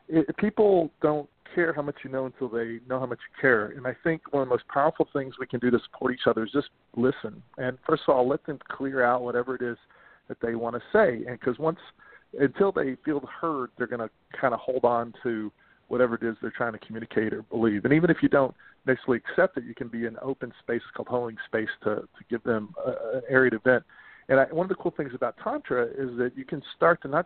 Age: 40-59